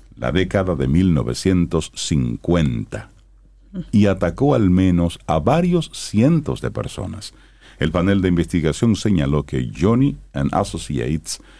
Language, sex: Spanish, male